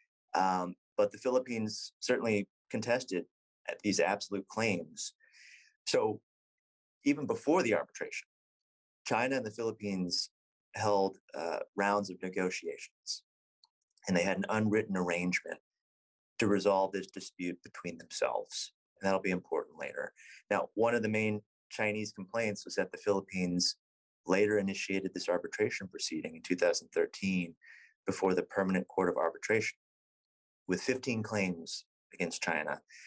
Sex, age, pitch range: male, 30-49, 95-135 Hz